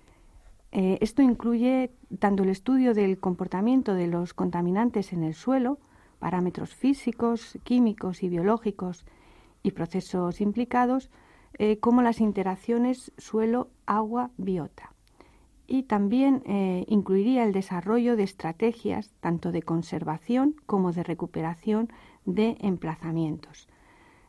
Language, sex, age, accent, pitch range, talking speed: Spanish, female, 40-59, Spanish, 175-230 Hz, 105 wpm